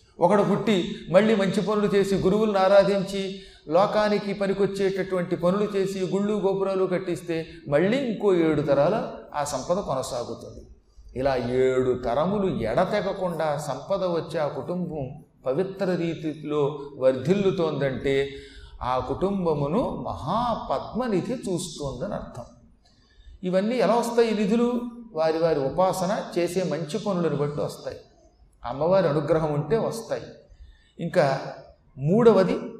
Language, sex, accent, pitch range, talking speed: Telugu, male, native, 150-200 Hz, 100 wpm